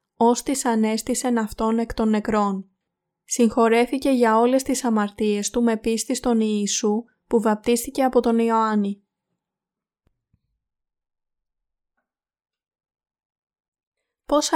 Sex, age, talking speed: female, 20-39, 90 wpm